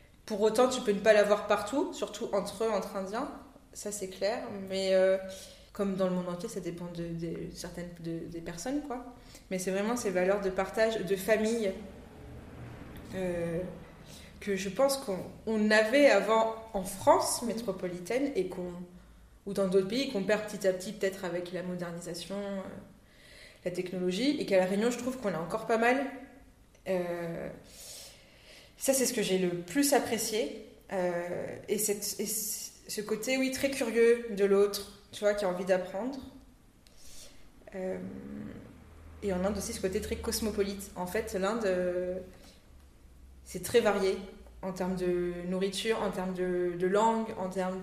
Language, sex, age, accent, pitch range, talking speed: French, female, 20-39, French, 180-220 Hz, 170 wpm